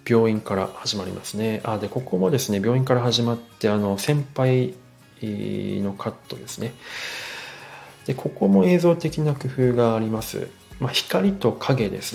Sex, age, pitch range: male, 40-59, 100-130 Hz